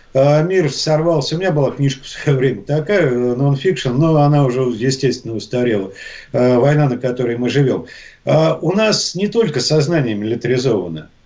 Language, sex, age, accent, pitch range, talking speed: Russian, male, 50-69, native, 130-165 Hz, 150 wpm